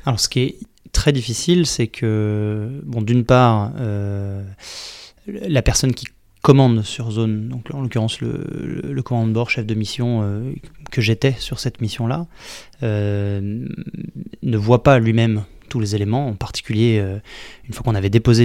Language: French